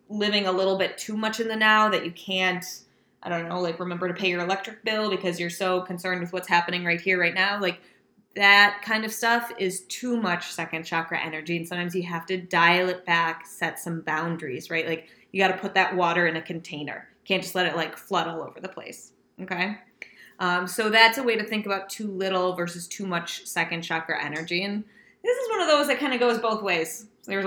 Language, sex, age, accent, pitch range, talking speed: English, female, 20-39, American, 175-215 Hz, 230 wpm